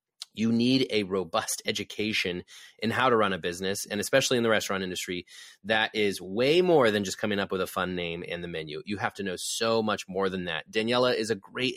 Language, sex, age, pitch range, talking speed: English, male, 30-49, 95-140 Hz, 230 wpm